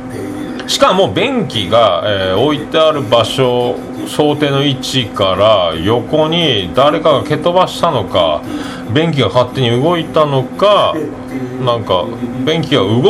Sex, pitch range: male, 120-175 Hz